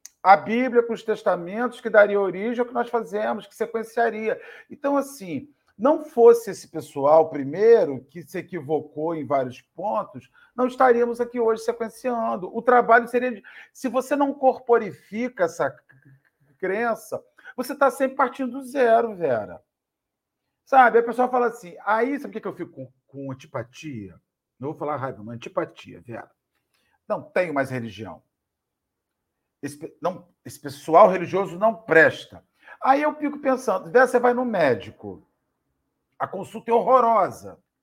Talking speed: 150 wpm